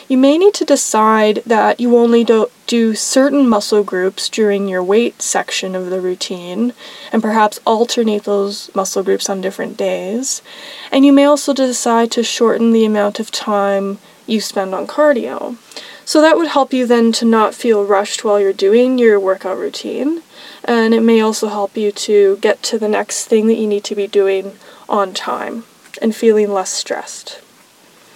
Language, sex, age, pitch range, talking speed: English, female, 20-39, 200-240 Hz, 180 wpm